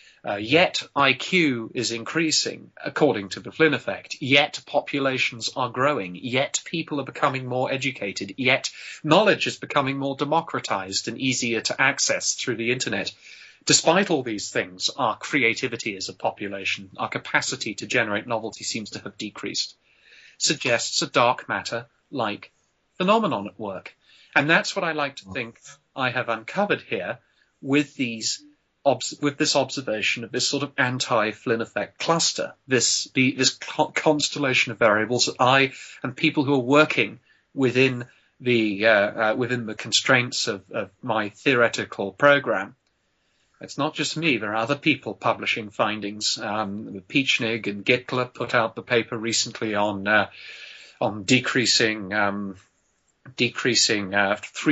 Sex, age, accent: male, 30-49, British